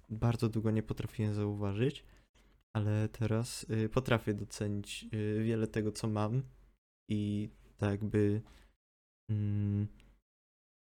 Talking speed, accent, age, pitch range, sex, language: 105 wpm, native, 20-39, 105-115 Hz, male, Polish